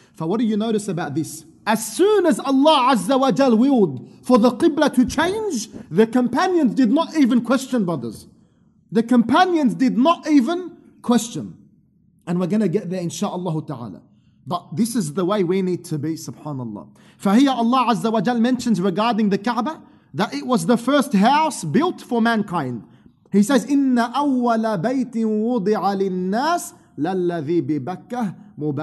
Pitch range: 180-270 Hz